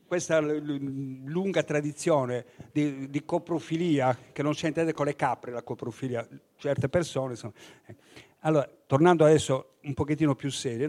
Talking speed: 160 wpm